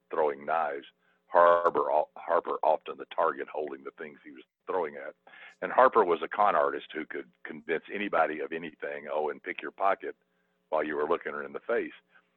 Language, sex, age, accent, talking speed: English, male, 60-79, American, 190 wpm